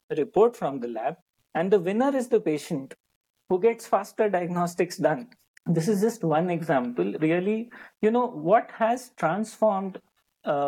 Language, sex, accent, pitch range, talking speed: English, male, Indian, 150-215 Hz, 150 wpm